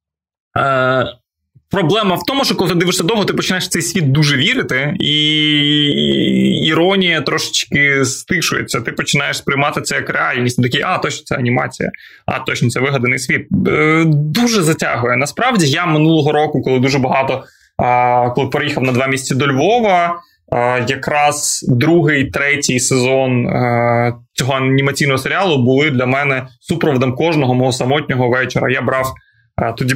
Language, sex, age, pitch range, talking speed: Ukrainian, male, 20-39, 130-155 Hz, 150 wpm